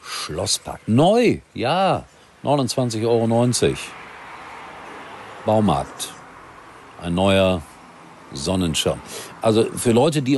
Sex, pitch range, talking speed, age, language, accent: male, 85-120 Hz, 75 wpm, 50-69, German, German